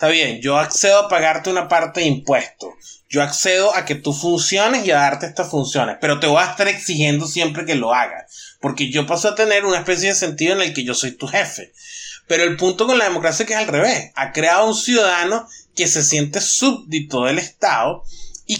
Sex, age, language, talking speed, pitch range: male, 20-39, Spanish, 225 wpm, 145-195 Hz